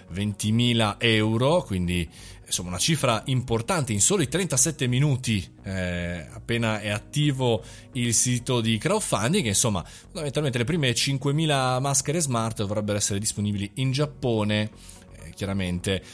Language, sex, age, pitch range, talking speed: Italian, male, 20-39, 100-140 Hz, 120 wpm